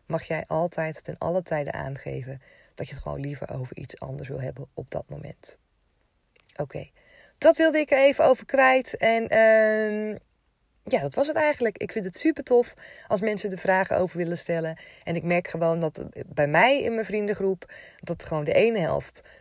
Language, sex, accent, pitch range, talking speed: Dutch, female, Dutch, 150-215 Hz, 195 wpm